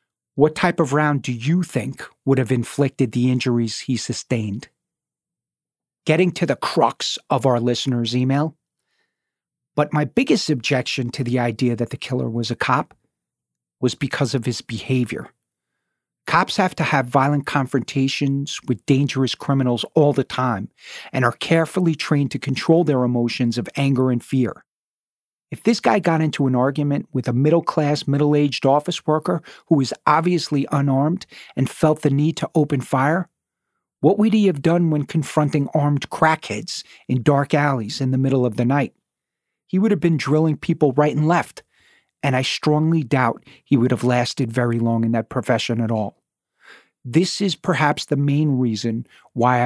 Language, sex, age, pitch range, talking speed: English, male, 40-59, 125-155 Hz, 165 wpm